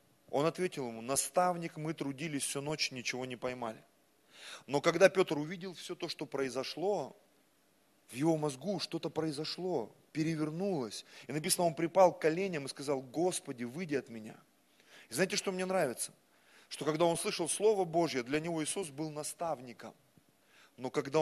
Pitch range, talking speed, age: 140-190 Hz, 155 wpm, 30-49